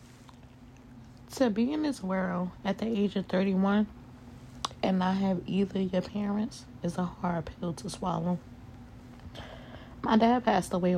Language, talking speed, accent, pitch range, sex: English, 140 wpm, American, 125-205 Hz, female